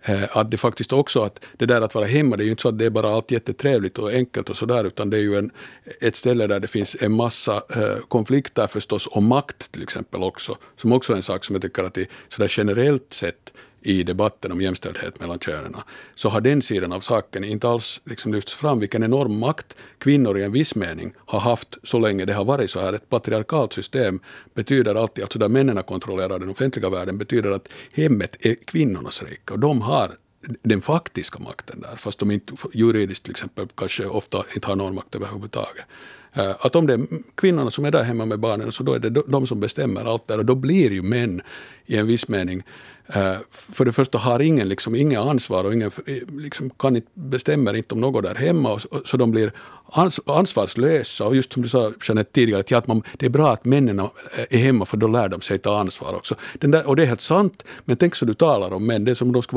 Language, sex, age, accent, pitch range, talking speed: Swedish, male, 50-69, Finnish, 105-130 Hz, 225 wpm